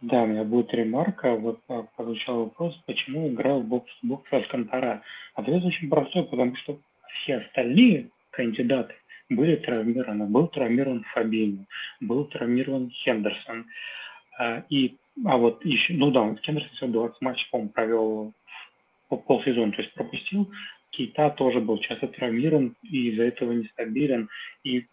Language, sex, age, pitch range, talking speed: Russian, male, 30-49, 115-150 Hz, 135 wpm